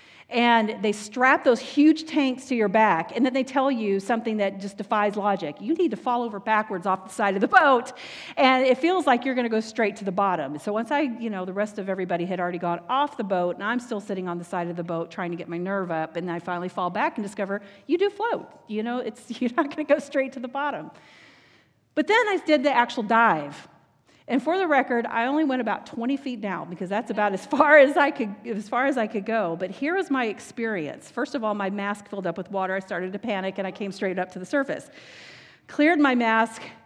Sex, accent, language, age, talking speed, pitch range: female, American, English, 40-59, 255 wpm, 190-255 Hz